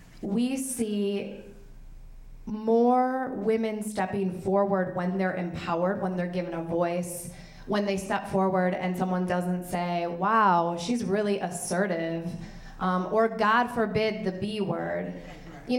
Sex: female